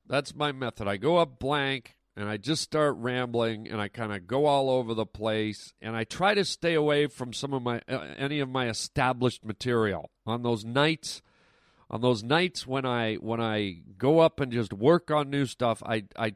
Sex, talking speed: male, 210 wpm